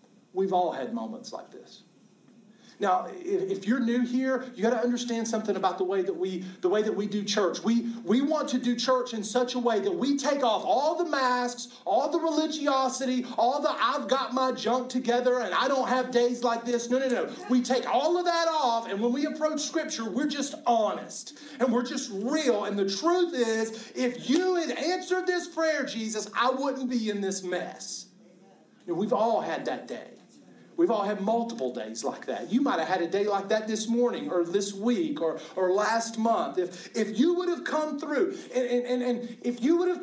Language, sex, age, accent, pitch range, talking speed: English, male, 40-59, American, 210-275 Hz, 215 wpm